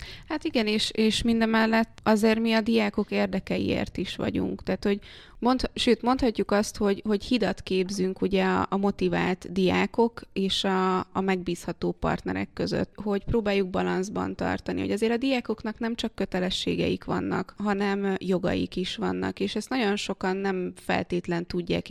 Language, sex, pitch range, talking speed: Hungarian, female, 180-215 Hz, 155 wpm